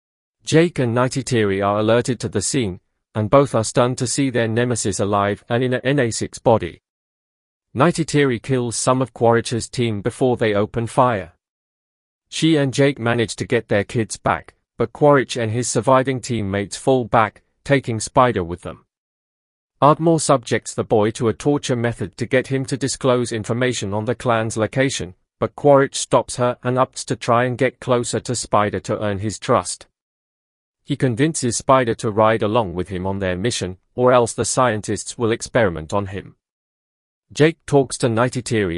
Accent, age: British, 40-59